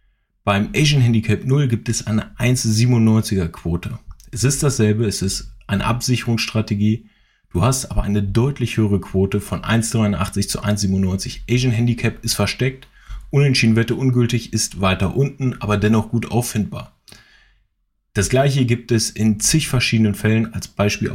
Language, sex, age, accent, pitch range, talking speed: German, male, 30-49, German, 100-120 Hz, 145 wpm